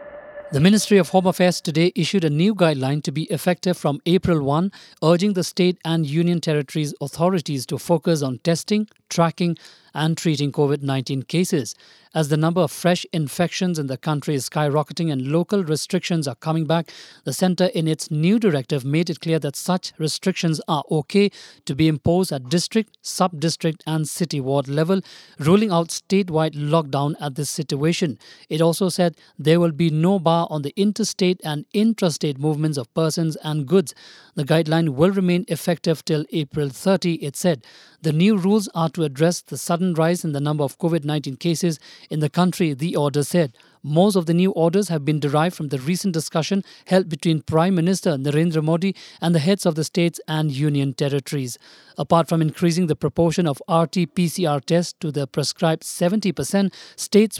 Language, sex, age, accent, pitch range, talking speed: English, male, 50-69, Indian, 150-180 Hz, 175 wpm